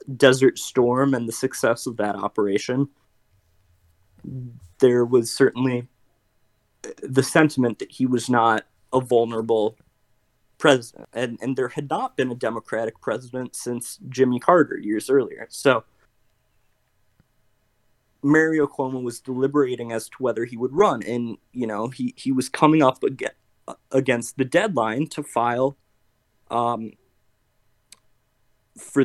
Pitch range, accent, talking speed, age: 110-140 Hz, American, 130 wpm, 20-39